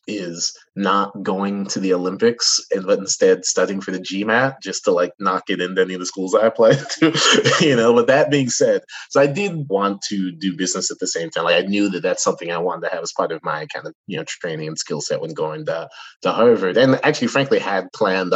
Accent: American